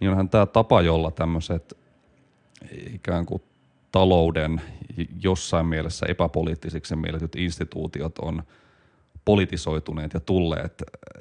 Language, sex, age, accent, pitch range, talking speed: Finnish, male, 30-49, native, 80-95 Hz, 95 wpm